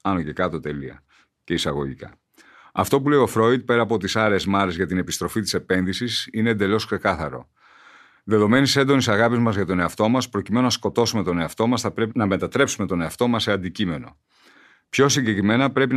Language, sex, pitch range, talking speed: Greek, male, 100-125 Hz, 185 wpm